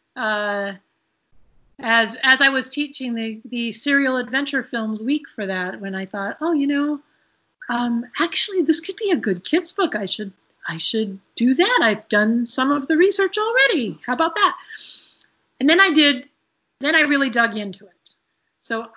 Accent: American